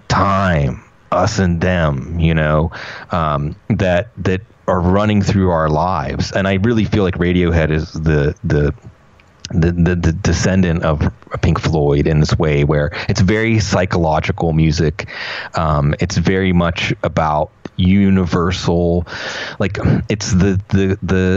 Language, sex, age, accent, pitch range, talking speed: English, male, 30-49, American, 80-100 Hz, 140 wpm